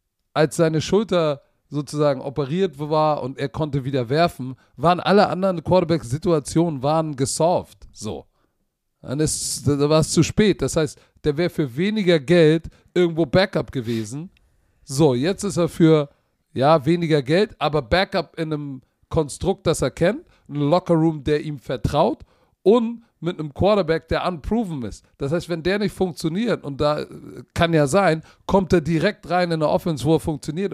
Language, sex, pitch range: German, male, 140-170 Hz